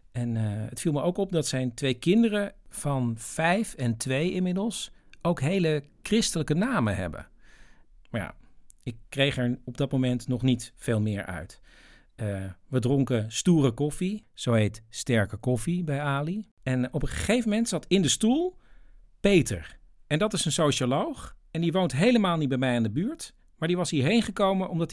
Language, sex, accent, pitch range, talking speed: Dutch, male, Dutch, 125-180 Hz, 185 wpm